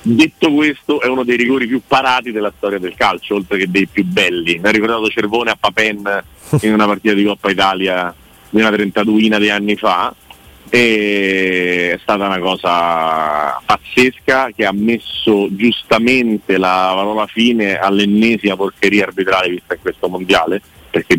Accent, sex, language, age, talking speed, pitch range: native, male, Italian, 40-59, 160 wpm, 95-115 Hz